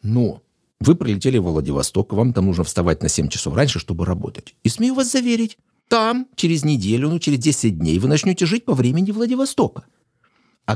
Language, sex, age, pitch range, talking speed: Russian, male, 60-79, 100-160 Hz, 185 wpm